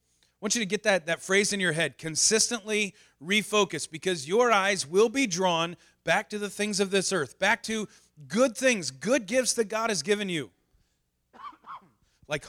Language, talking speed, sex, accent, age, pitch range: English, 185 wpm, male, American, 30-49, 135-205 Hz